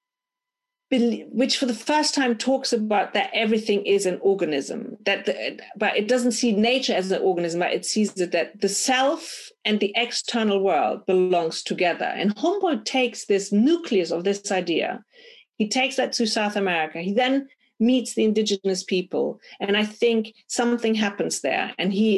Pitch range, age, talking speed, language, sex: 190-255 Hz, 40-59, 170 wpm, English, female